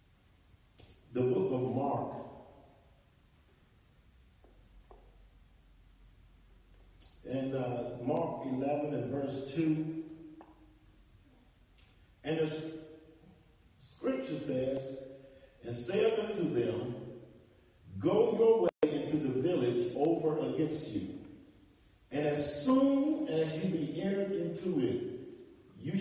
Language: English